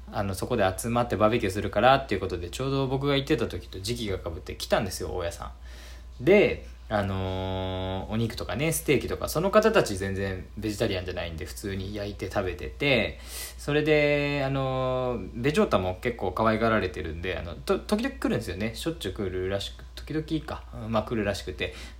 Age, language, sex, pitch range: 20-39, Japanese, male, 90-125 Hz